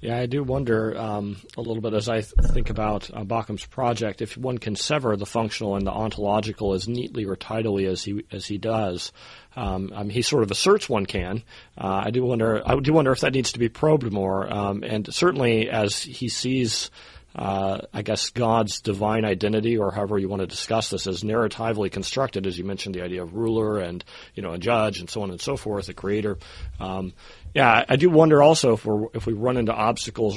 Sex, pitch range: male, 100-120 Hz